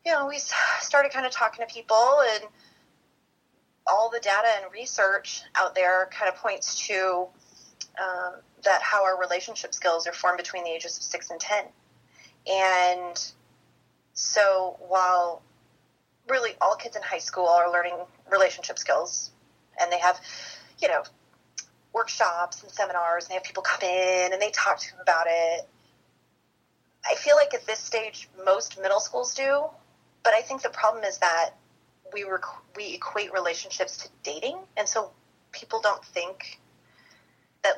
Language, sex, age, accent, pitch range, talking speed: English, female, 30-49, American, 175-225 Hz, 160 wpm